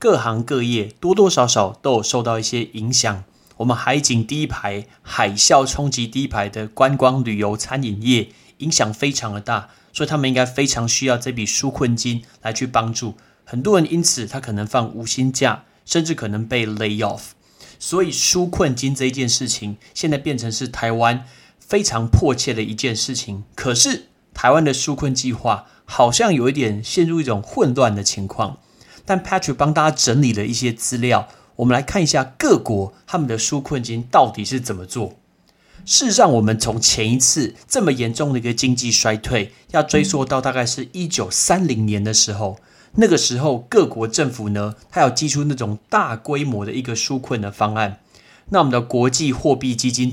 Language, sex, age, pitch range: Chinese, male, 20-39, 110-140 Hz